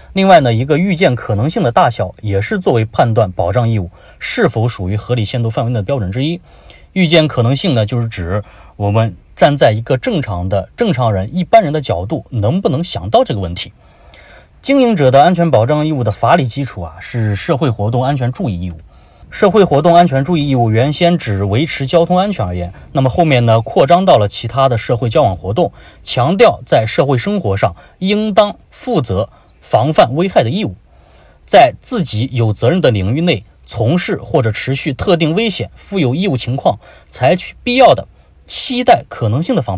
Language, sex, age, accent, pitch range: Chinese, male, 30-49, native, 105-155 Hz